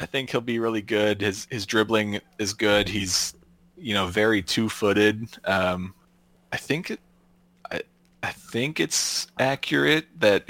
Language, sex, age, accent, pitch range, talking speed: English, male, 30-49, American, 95-115 Hz, 155 wpm